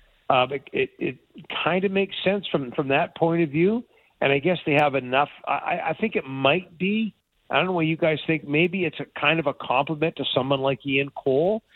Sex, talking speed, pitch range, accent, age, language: male, 225 wpm, 125-150 Hz, American, 50-69, English